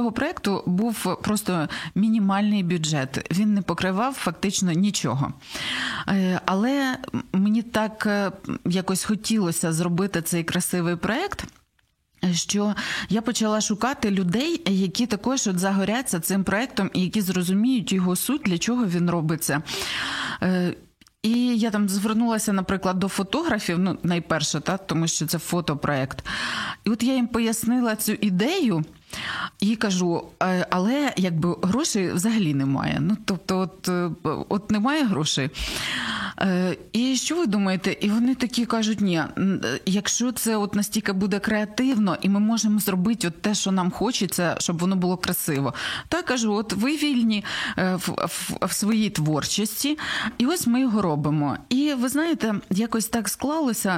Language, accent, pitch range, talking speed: Ukrainian, native, 180-225 Hz, 135 wpm